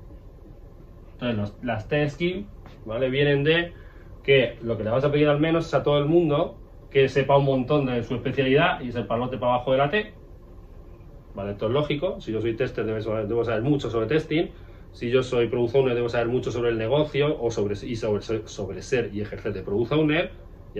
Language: Spanish